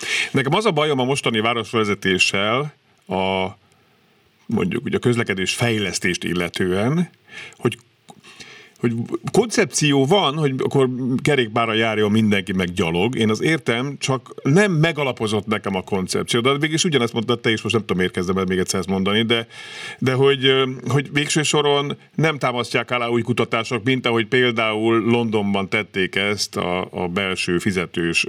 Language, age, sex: Hungarian, 50-69, male